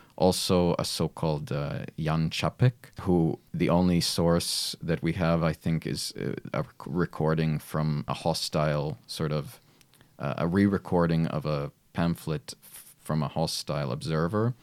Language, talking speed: English, 130 wpm